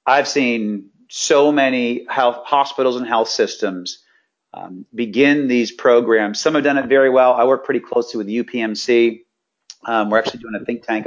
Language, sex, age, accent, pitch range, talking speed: English, male, 40-59, American, 120-155 Hz, 175 wpm